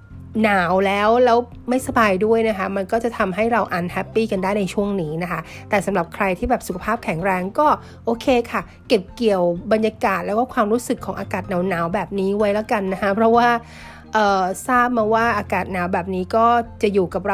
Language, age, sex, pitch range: Thai, 30-49, female, 190-235 Hz